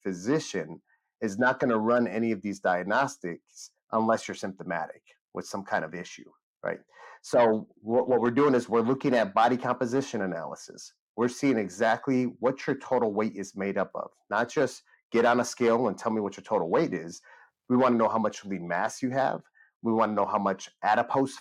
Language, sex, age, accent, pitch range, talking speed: English, male, 30-49, American, 105-125 Hz, 205 wpm